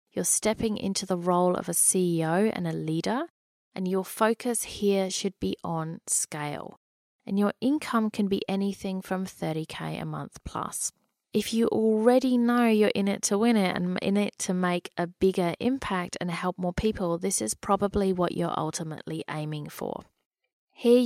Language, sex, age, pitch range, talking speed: English, female, 30-49, 175-215 Hz, 175 wpm